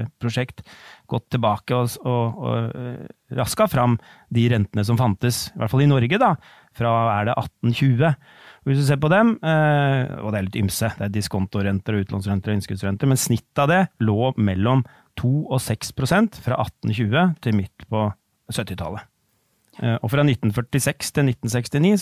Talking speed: 155 wpm